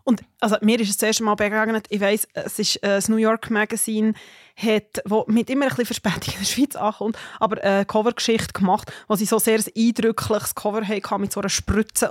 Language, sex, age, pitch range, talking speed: German, female, 20-39, 210-235 Hz, 215 wpm